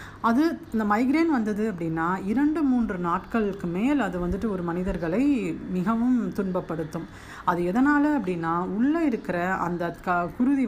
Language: Tamil